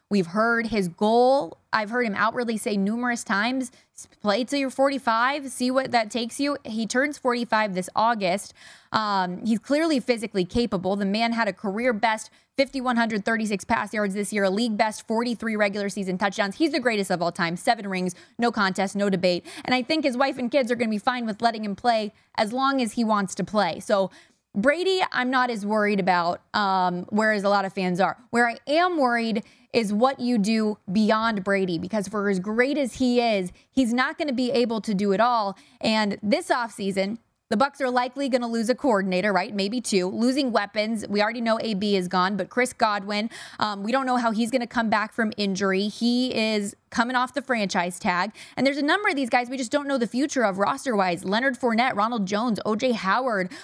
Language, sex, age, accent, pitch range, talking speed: English, female, 20-39, American, 205-255 Hz, 210 wpm